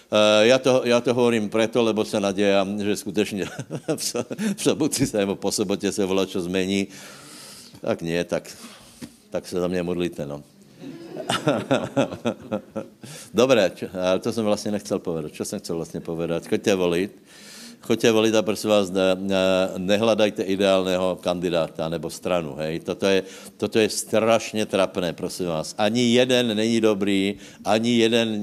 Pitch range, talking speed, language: 95-105 Hz, 150 wpm, Slovak